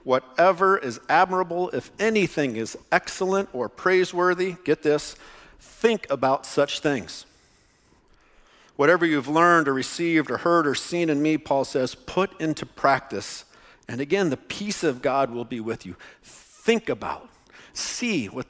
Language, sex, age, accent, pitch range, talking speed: English, male, 50-69, American, 125-165 Hz, 145 wpm